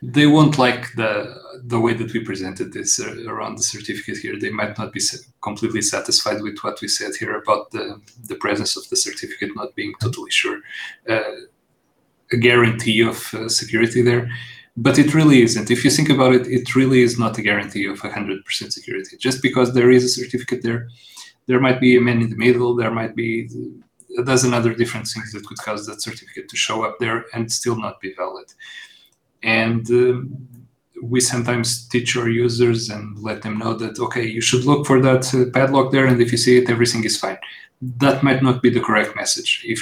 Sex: male